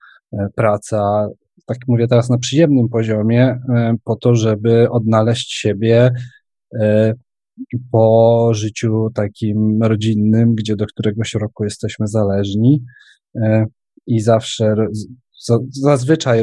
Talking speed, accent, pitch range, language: 90 wpm, native, 105-130 Hz, Polish